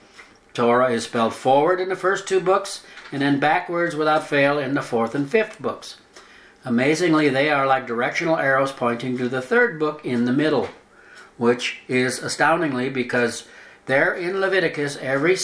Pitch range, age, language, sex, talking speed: 120-155 Hz, 60-79, English, male, 165 wpm